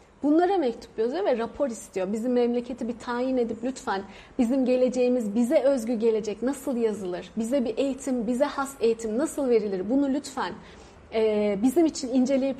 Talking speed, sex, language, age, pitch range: 155 wpm, female, Turkish, 30-49, 225-275 Hz